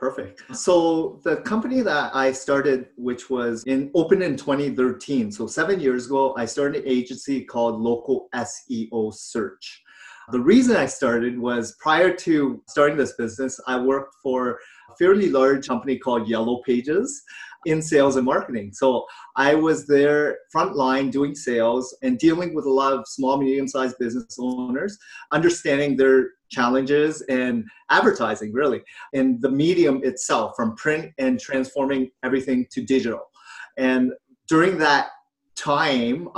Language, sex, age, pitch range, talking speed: English, male, 30-49, 125-150 Hz, 145 wpm